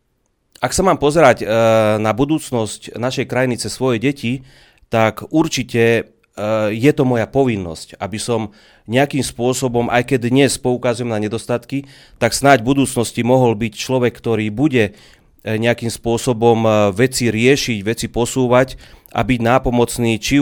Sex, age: male, 30-49